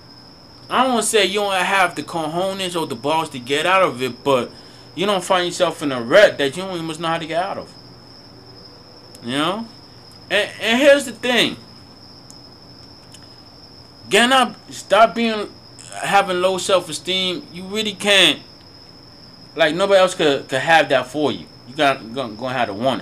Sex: male